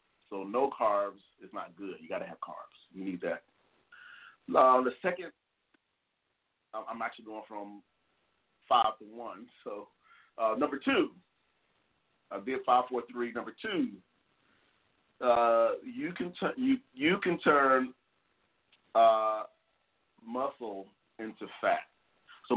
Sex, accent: male, American